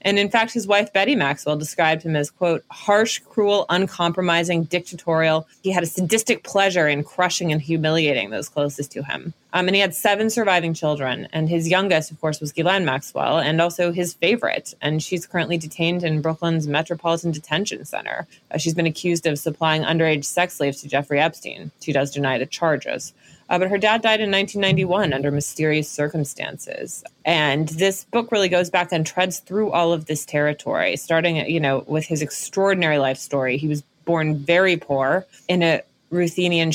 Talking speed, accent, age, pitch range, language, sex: 185 wpm, American, 20-39, 150-185 Hz, English, female